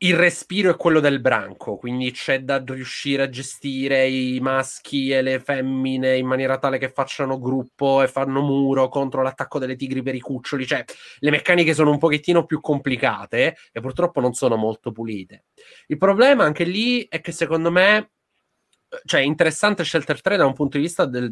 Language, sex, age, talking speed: Italian, male, 20-39, 185 wpm